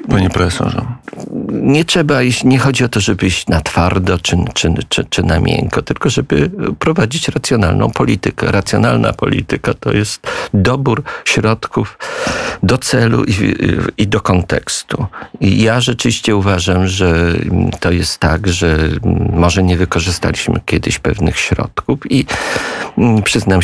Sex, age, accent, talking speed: male, 50-69, native, 135 wpm